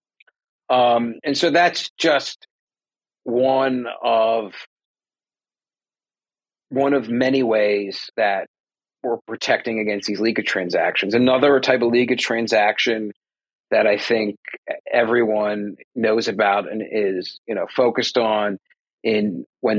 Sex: male